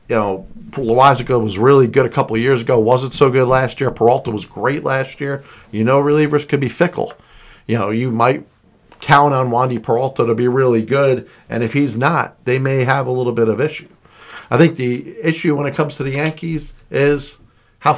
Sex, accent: male, American